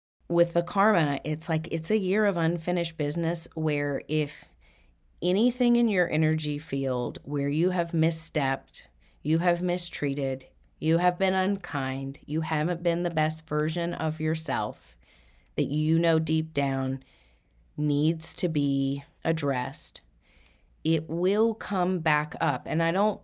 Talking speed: 140 wpm